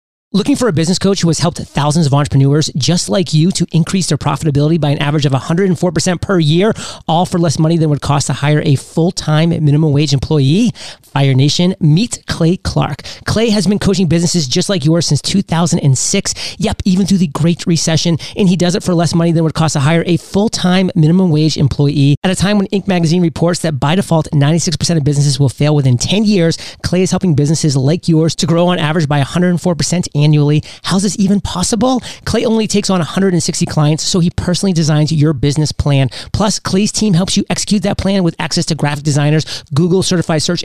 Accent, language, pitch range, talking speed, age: American, English, 150-185 Hz, 210 wpm, 30-49